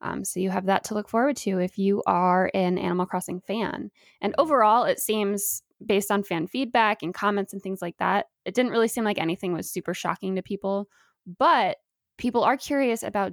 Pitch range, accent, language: 185-220 Hz, American, English